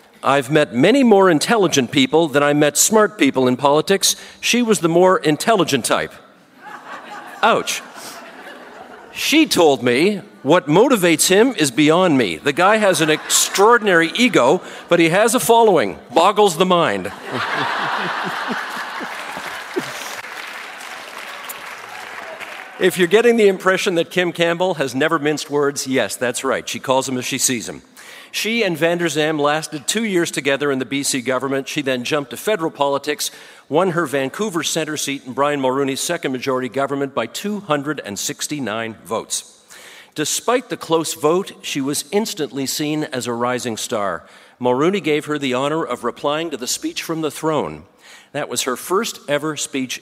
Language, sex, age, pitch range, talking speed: English, male, 50-69, 135-185 Hz, 155 wpm